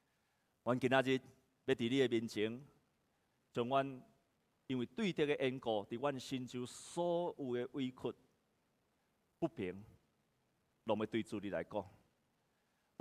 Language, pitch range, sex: Chinese, 130-195 Hz, male